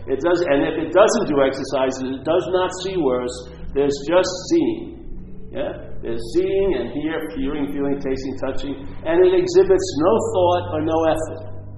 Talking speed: 165 wpm